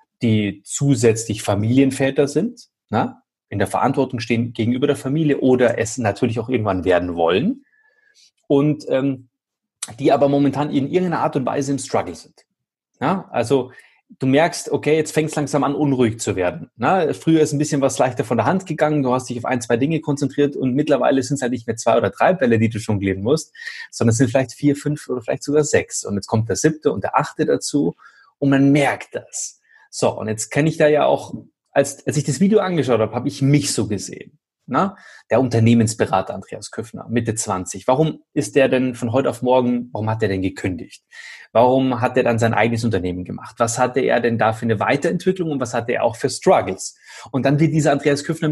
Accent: German